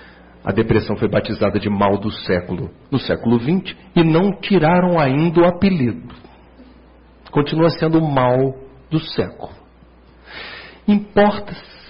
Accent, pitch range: Brazilian, 110-170 Hz